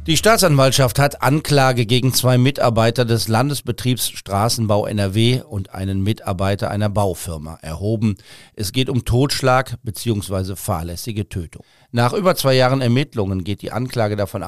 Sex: male